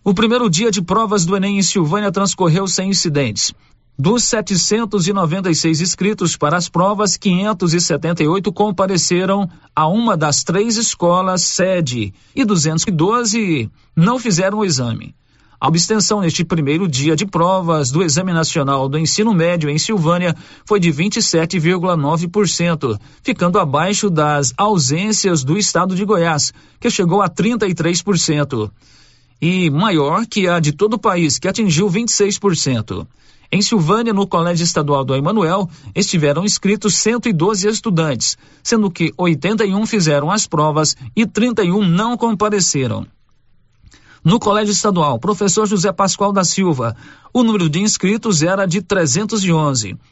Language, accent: Portuguese, Brazilian